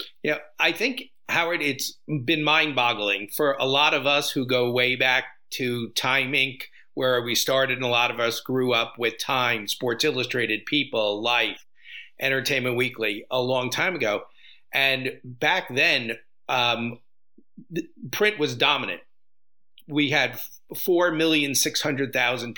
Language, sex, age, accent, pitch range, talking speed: English, male, 40-59, American, 120-150 Hz, 140 wpm